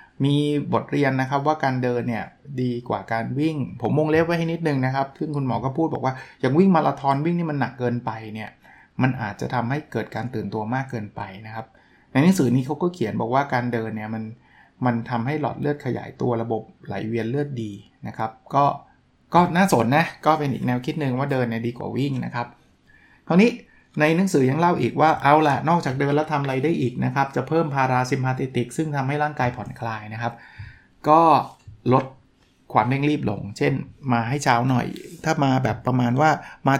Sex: male